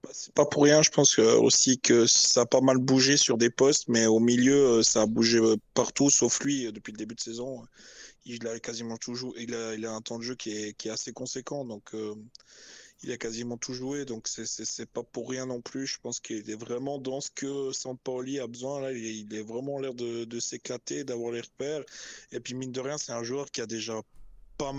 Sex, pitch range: male, 115-135 Hz